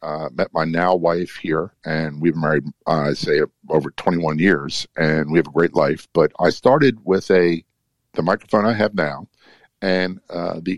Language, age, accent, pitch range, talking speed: English, 50-69, American, 80-95 Hz, 195 wpm